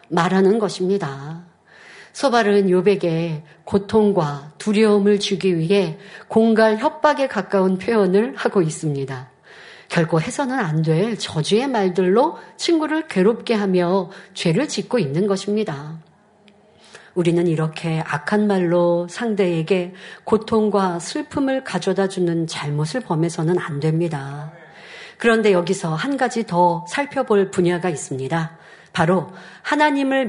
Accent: native